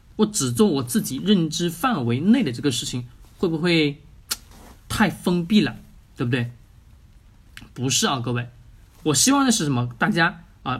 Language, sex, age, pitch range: Chinese, male, 20-39, 120-180 Hz